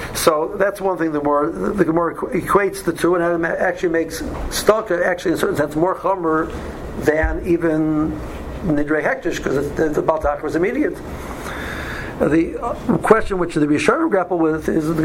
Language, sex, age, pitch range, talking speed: English, male, 60-79, 155-185 Hz, 170 wpm